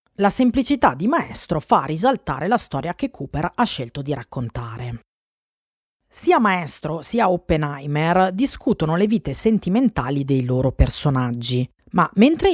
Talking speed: 130 wpm